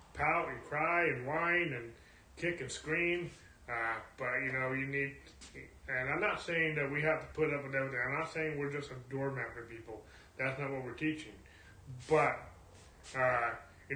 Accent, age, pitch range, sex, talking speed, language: American, 30-49, 120-140 Hz, male, 190 wpm, English